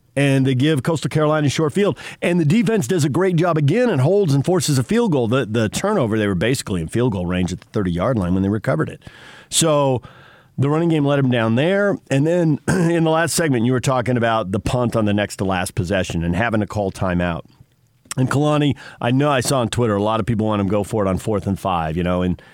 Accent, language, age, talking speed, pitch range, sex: American, English, 50-69, 255 wpm, 110-150 Hz, male